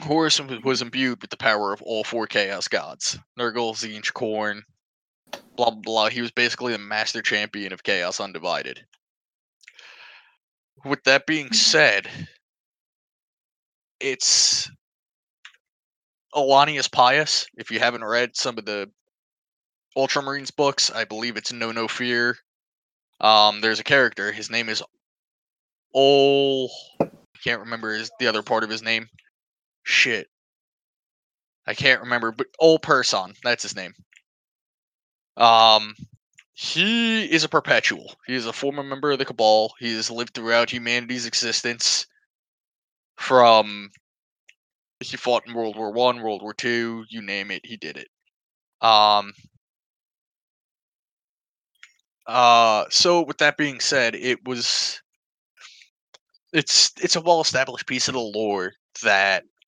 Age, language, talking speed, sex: 20-39, English, 130 wpm, male